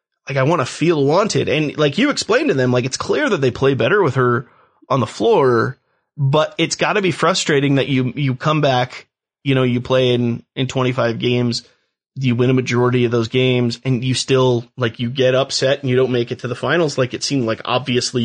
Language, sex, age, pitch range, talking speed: English, male, 30-49, 120-145 Hz, 225 wpm